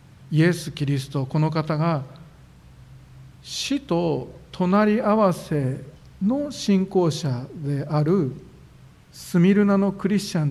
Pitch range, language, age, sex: 135-175 Hz, Japanese, 50-69, male